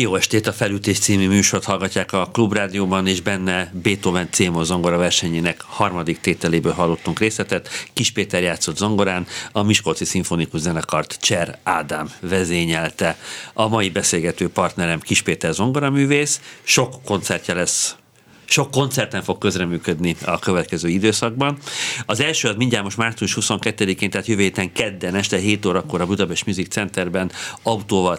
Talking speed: 145 wpm